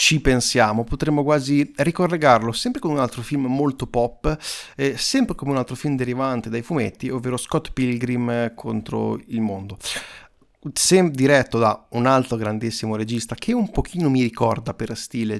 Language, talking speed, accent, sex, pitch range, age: Italian, 160 wpm, native, male, 115-150 Hz, 30-49